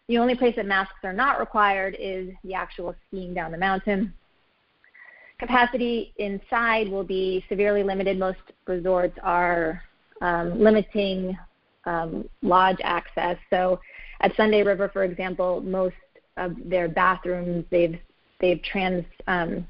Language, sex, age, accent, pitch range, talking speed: English, female, 30-49, American, 175-205 Hz, 130 wpm